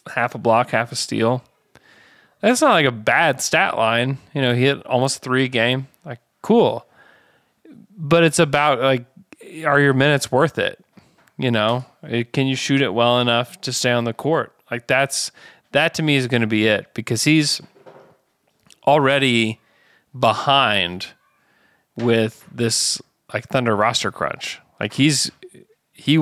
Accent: American